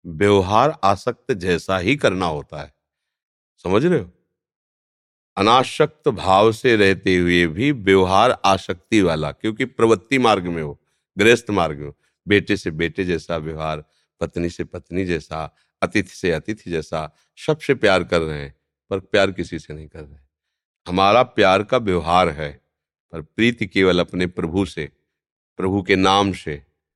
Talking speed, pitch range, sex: 150 wpm, 85-125 Hz, male